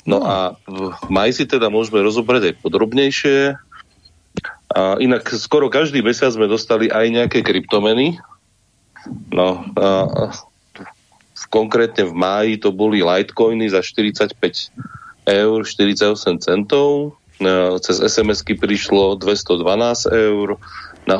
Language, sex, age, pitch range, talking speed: Slovak, male, 30-49, 90-105 Hz, 110 wpm